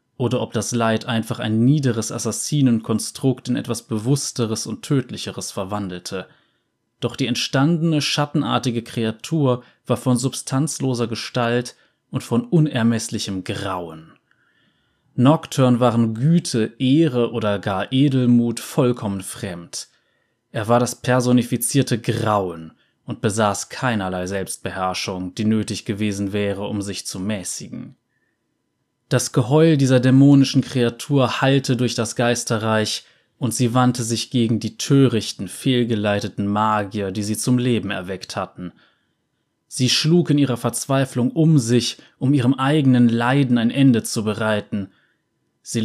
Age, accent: 20-39, German